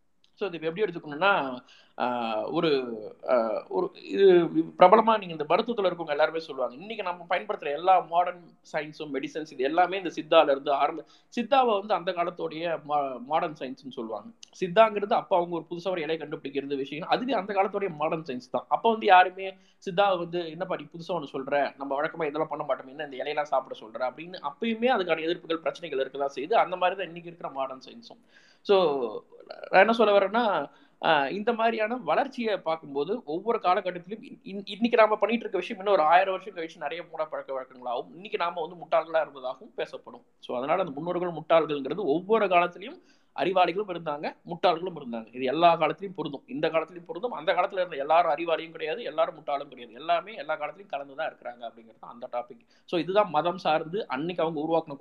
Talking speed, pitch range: 170 wpm, 150-205 Hz